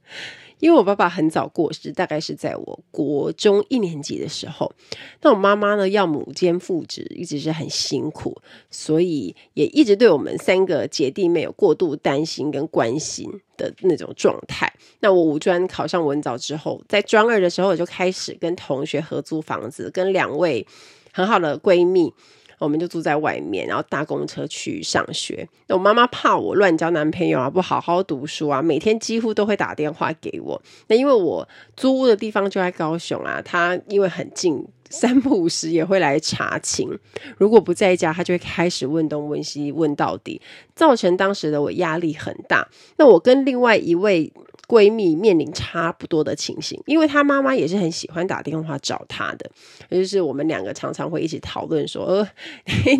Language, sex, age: Chinese, female, 30-49